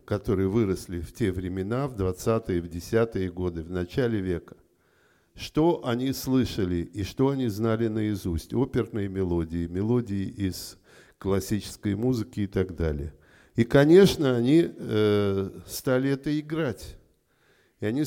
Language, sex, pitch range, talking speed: Russian, male, 95-125 Hz, 125 wpm